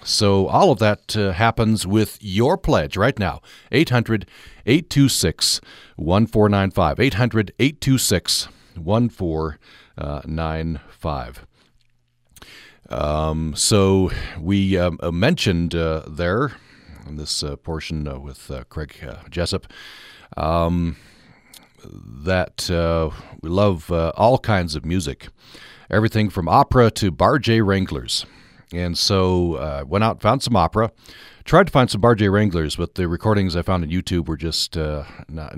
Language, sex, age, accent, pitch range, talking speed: English, male, 50-69, American, 80-105 Hz, 120 wpm